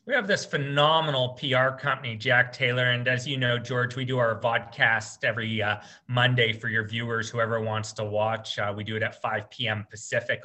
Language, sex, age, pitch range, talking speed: English, male, 30-49, 115-150 Hz, 200 wpm